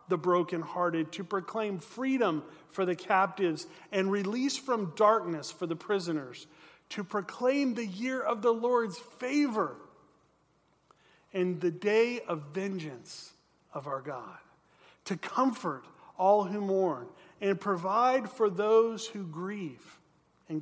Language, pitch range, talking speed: English, 170-210 Hz, 125 wpm